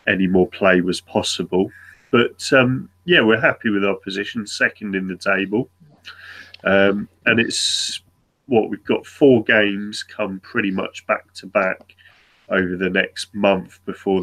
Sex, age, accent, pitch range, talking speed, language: male, 30-49, British, 90-100 Hz, 150 wpm, English